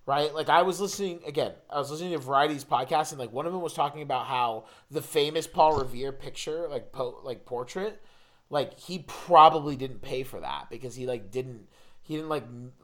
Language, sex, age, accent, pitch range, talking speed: English, male, 30-49, American, 130-170 Hz, 220 wpm